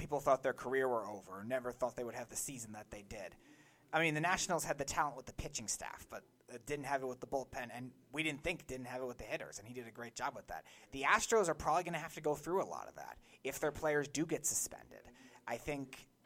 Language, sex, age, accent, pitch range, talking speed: English, male, 30-49, American, 120-150 Hz, 275 wpm